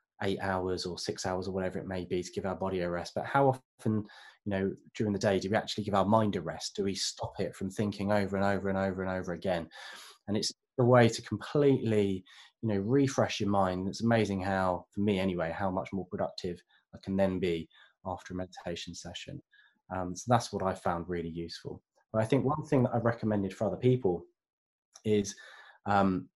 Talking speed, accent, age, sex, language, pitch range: 220 wpm, British, 20-39, male, English, 95-110 Hz